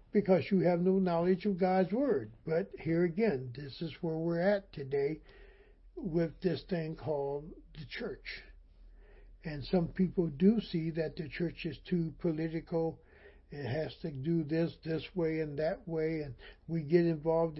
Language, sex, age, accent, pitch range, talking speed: English, male, 60-79, American, 140-180 Hz, 165 wpm